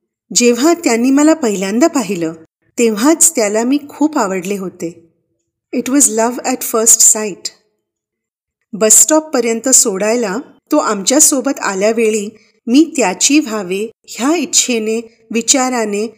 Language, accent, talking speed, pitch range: Marathi, native, 110 wpm, 200-270 Hz